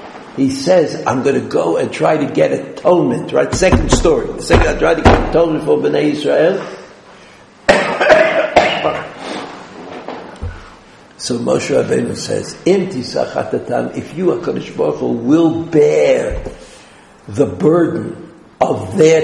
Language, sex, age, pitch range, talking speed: English, male, 70-89, 175-225 Hz, 120 wpm